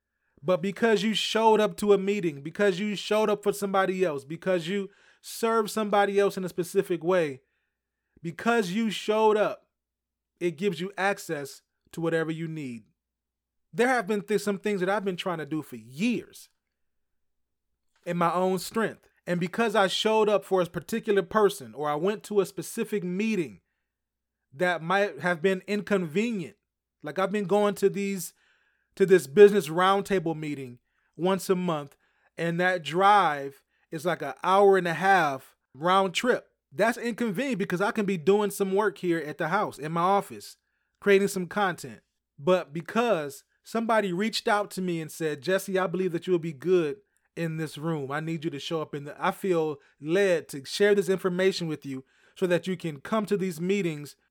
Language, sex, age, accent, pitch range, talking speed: English, male, 30-49, American, 165-205 Hz, 185 wpm